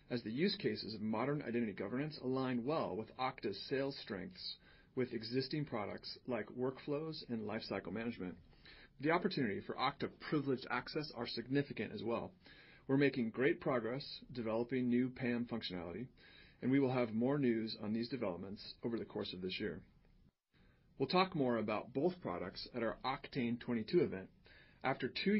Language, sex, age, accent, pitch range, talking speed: English, male, 40-59, American, 110-135 Hz, 160 wpm